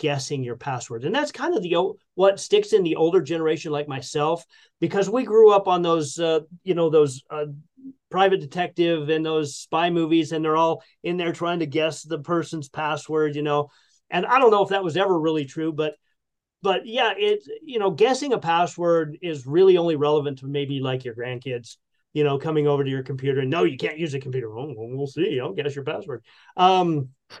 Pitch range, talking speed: 145-180 Hz, 210 wpm